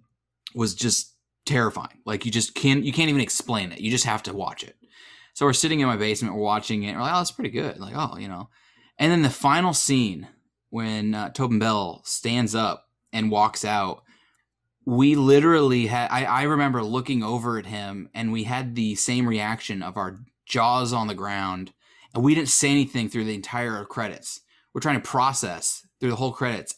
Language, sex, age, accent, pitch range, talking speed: English, male, 20-39, American, 110-135 Hz, 205 wpm